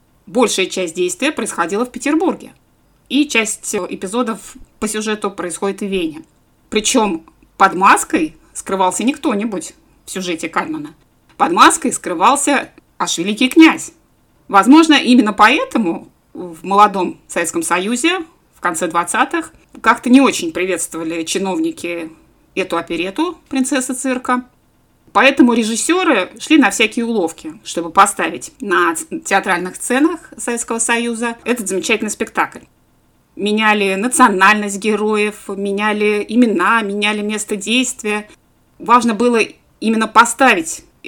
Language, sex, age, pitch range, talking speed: Russian, female, 20-39, 190-265 Hz, 110 wpm